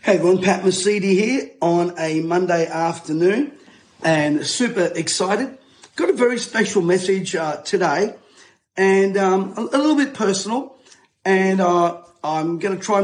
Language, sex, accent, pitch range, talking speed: English, male, Australian, 175-220 Hz, 145 wpm